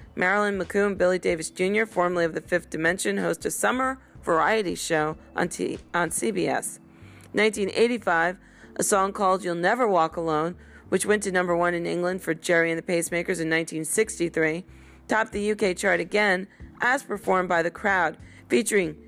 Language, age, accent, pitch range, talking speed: English, 40-59, American, 170-210 Hz, 165 wpm